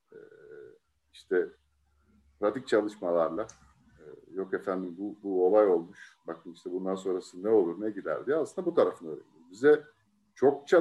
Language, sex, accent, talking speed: Turkish, male, native, 140 wpm